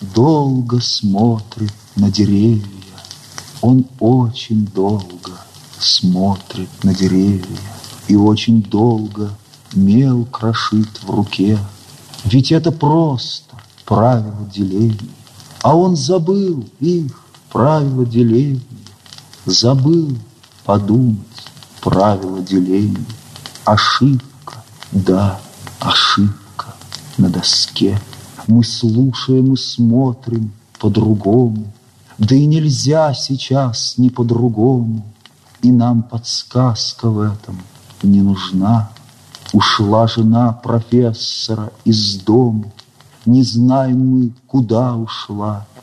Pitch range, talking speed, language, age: 105-130 Hz, 85 wpm, Russian, 40-59